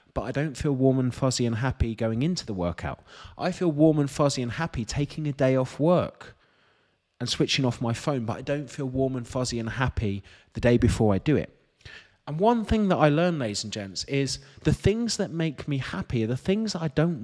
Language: English